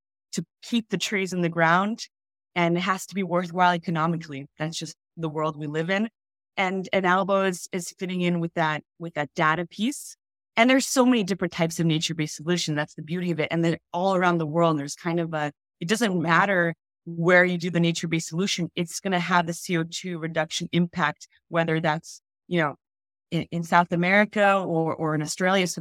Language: English